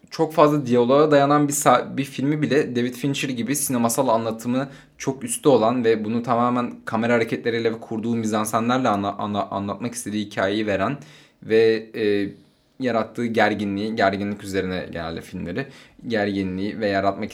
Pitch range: 105-135 Hz